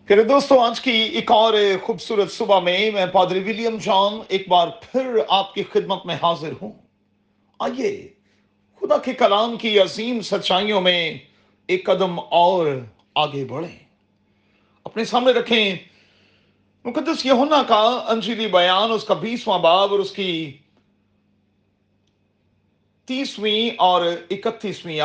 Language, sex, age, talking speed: Urdu, male, 40-59, 125 wpm